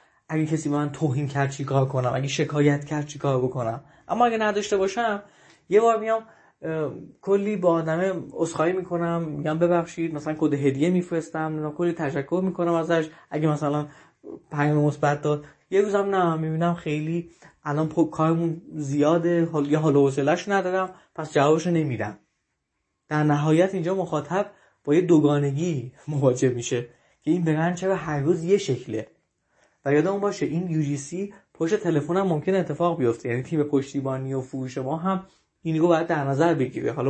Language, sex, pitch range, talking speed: Persian, male, 140-175 Hz, 155 wpm